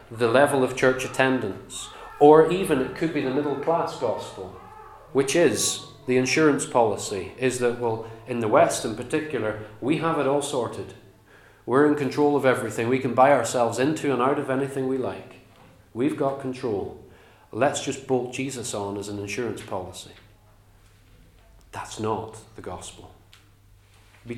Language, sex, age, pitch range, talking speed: English, male, 40-59, 105-130 Hz, 160 wpm